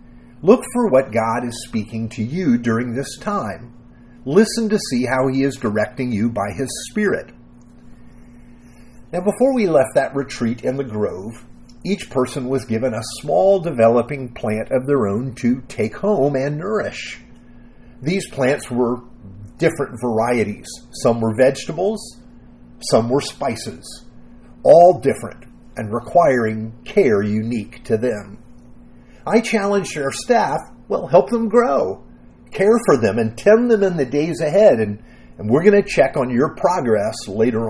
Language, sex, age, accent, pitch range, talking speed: English, male, 50-69, American, 115-175 Hz, 150 wpm